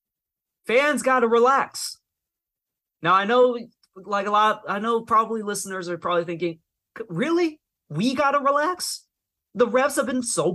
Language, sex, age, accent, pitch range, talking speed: English, male, 30-49, American, 135-195 Hz, 140 wpm